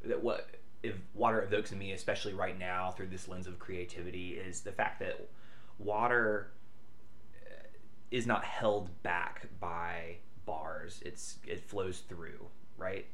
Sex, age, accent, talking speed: male, 20-39, American, 140 wpm